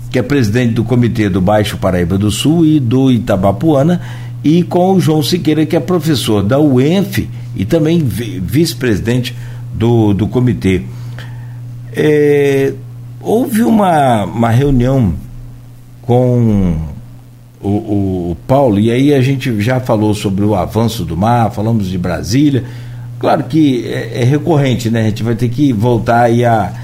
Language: Portuguese